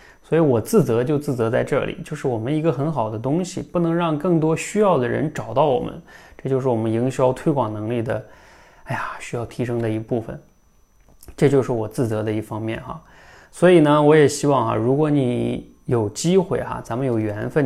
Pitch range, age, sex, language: 115-155 Hz, 20-39, male, Chinese